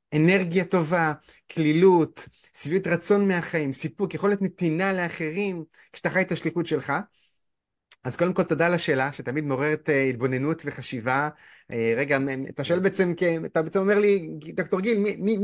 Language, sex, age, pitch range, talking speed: Hebrew, male, 30-49, 150-200 Hz, 145 wpm